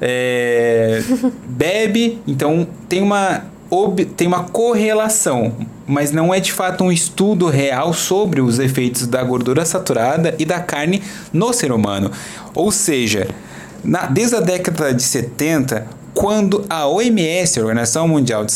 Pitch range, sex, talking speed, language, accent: 125-185 Hz, male, 140 wpm, Portuguese, Brazilian